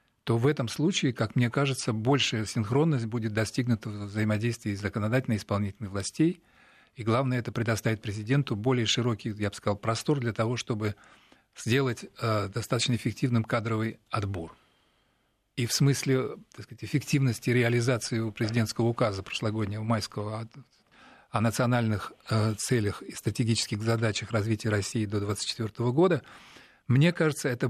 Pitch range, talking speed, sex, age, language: 110-125 Hz, 130 wpm, male, 40-59, Russian